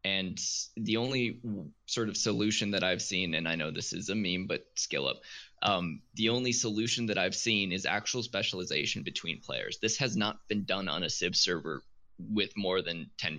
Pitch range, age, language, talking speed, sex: 95-115 Hz, 20-39, English, 195 wpm, male